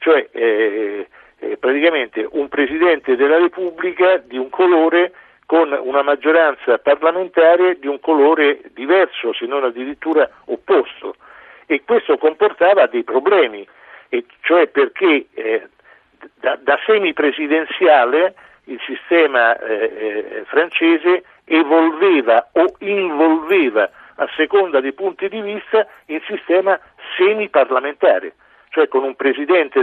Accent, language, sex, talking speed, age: native, Italian, male, 115 wpm, 60-79